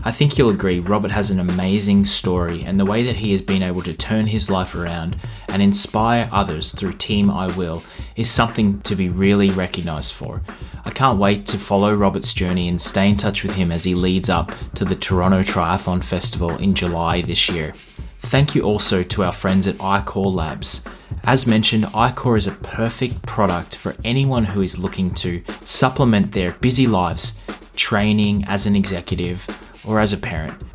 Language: English